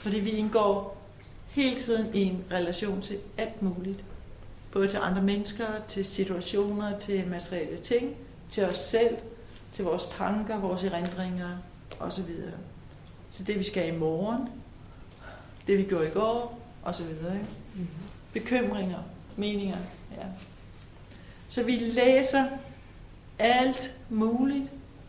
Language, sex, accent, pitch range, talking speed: Danish, female, native, 175-225 Hz, 115 wpm